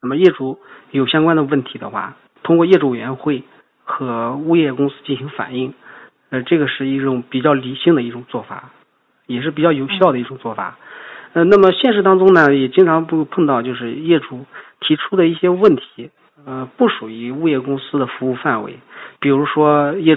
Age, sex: 40-59, male